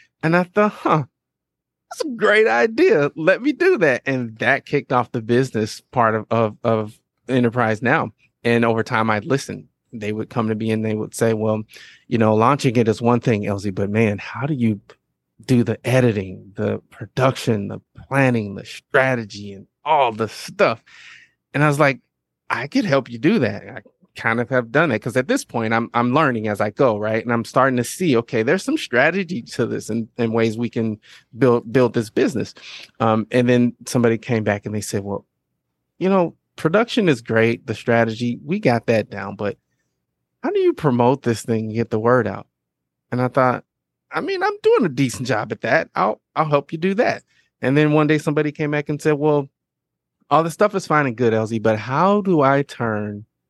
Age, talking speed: 30-49, 210 wpm